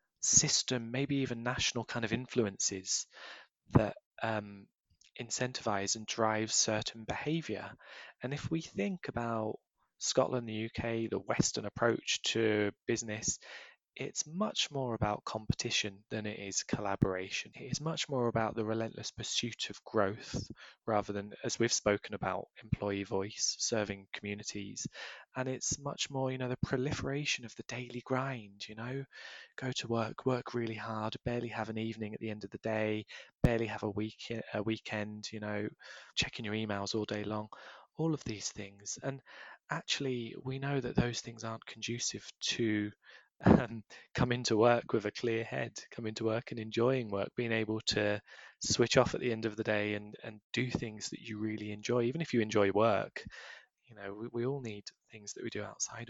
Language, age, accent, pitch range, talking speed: English, 20-39, British, 105-130 Hz, 175 wpm